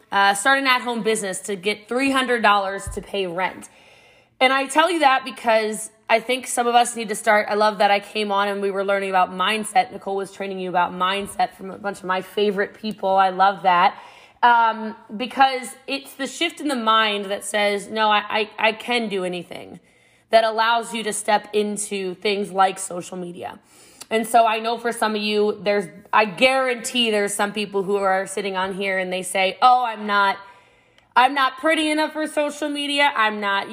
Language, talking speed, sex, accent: English, 205 wpm, female, American